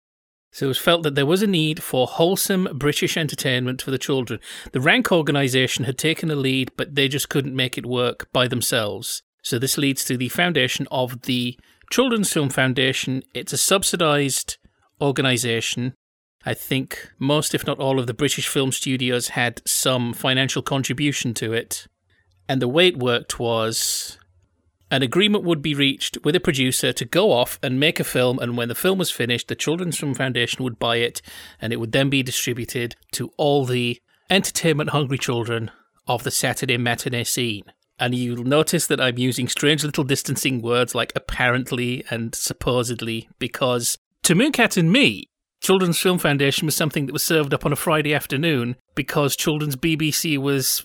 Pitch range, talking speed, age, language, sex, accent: 125-155 Hz, 175 wpm, 30-49, English, male, British